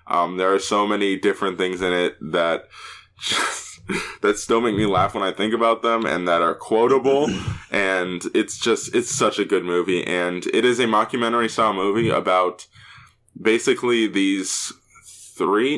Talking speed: 165 wpm